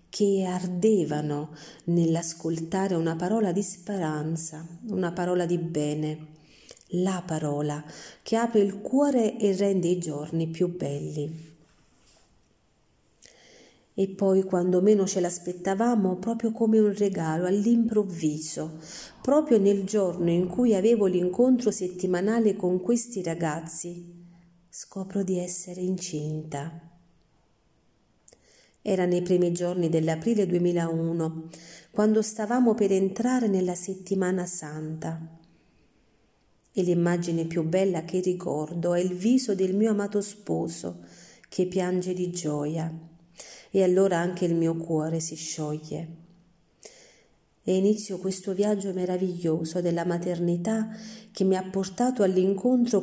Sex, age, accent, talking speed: female, 40-59, native, 110 wpm